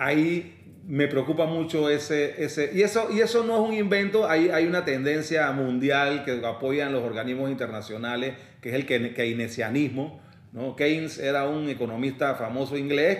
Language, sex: Spanish, male